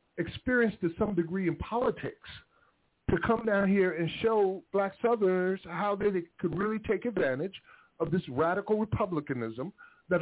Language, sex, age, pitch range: English, male, 50-69, 135-180 Hz